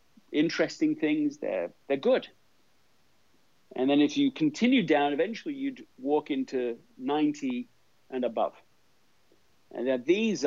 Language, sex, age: English, male, 50-69